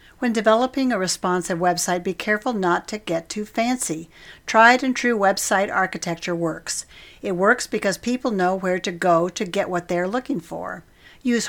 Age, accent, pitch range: 50-69, American, 175-205 Hz